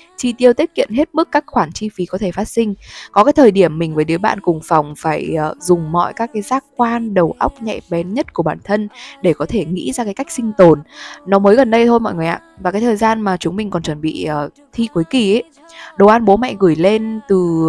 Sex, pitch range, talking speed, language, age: female, 175-245 Hz, 260 wpm, Vietnamese, 20-39